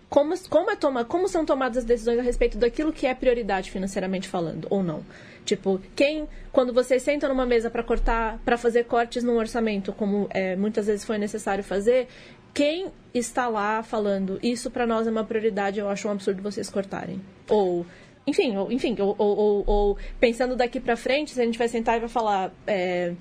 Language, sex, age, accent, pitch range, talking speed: Portuguese, female, 20-39, Brazilian, 200-255 Hz, 200 wpm